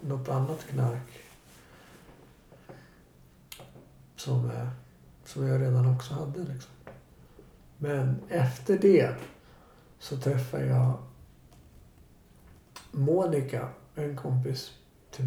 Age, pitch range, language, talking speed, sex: 60-79, 125-155 Hz, Swedish, 80 wpm, male